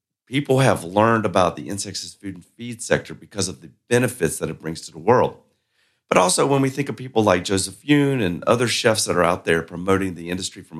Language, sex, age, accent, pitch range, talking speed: English, male, 40-59, American, 90-120 Hz, 230 wpm